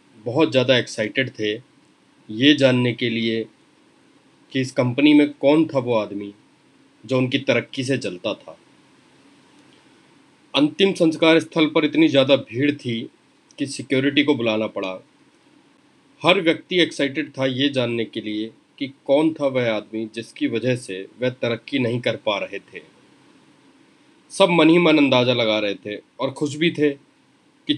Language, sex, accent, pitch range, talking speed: Hindi, male, native, 120-160 Hz, 155 wpm